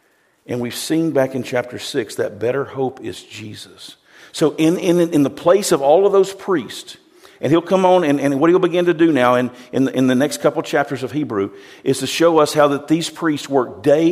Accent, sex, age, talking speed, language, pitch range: American, male, 50-69, 235 wpm, English, 130-165 Hz